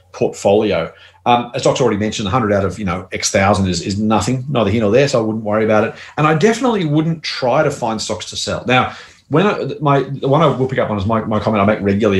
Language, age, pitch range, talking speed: English, 30-49, 100-130 Hz, 265 wpm